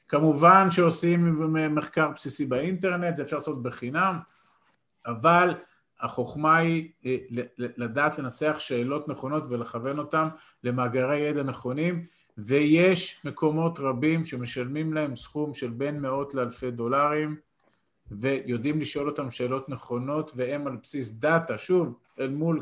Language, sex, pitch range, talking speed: Hebrew, male, 140-185 Hz, 115 wpm